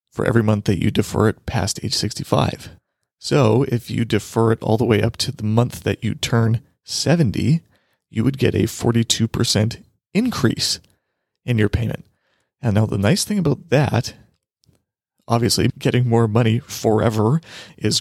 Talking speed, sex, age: 160 wpm, male, 30-49